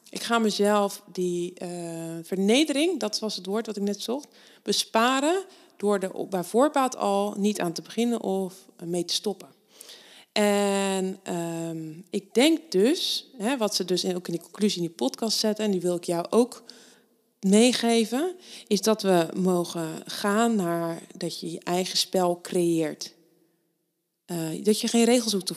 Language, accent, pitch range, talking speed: Dutch, Dutch, 180-235 Hz, 165 wpm